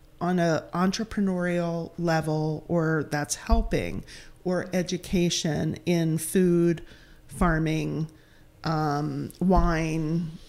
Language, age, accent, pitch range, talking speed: English, 40-59, American, 165-205 Hz, 80 wpm